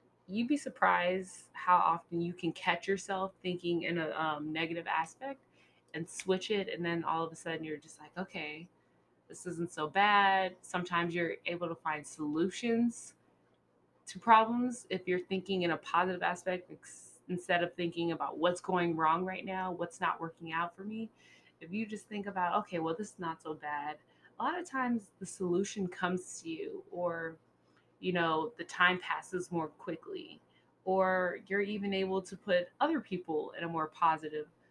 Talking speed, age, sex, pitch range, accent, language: 180 wpm, 20-39, female, 165-190 Hz, American, English